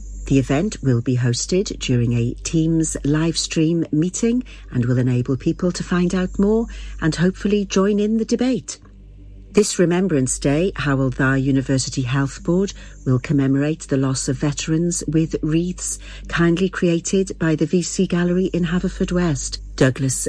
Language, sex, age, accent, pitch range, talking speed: English, female, 50-69, British, 130-175 Hz, 150 wpm